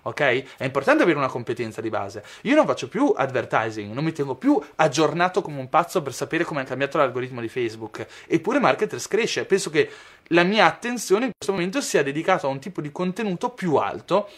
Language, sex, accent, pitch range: Italian, male, native, 130-190 Hz